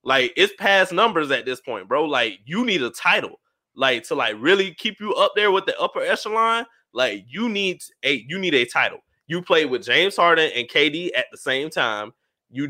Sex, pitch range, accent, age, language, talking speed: male, 130-210 Hz, American, 20-39, English, 215 wpm